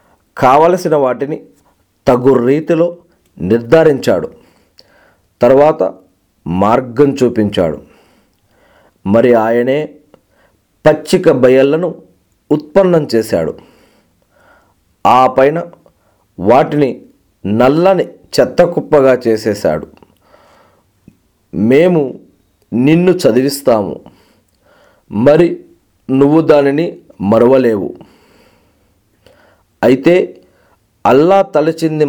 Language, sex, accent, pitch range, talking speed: Telugu, male, native, 125-165 Hz, 55 wpm